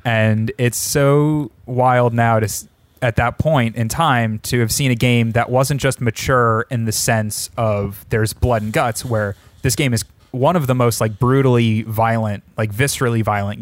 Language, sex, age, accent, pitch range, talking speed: English, male, 20-39, American, 105-125 Hz, 185 wpm